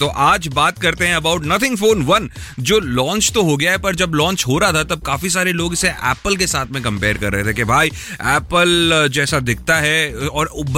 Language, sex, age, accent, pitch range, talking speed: Hindi, male, 30-49, native, 125-175 Hz, 230 wpm